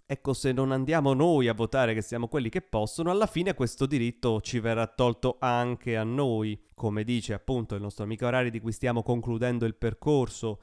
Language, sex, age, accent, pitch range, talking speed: Italian, male, 30-49, native, 110-135 Hz, 200 wpm